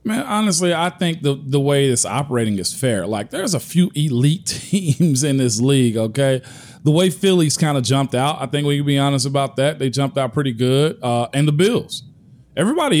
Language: English